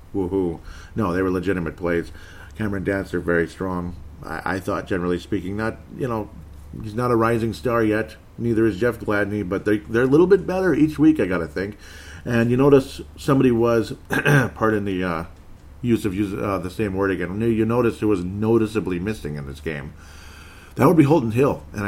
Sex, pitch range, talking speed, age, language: male, 85-110 Hz, 195 wpm, 40-59, English